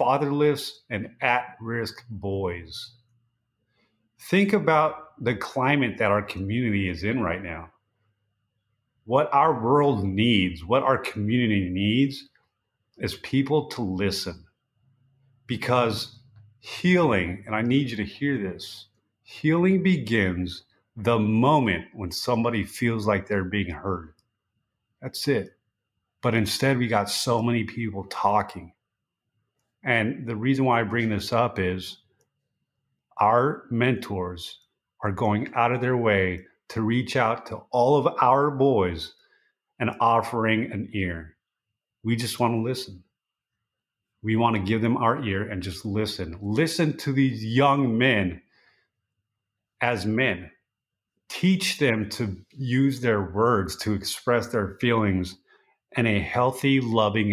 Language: English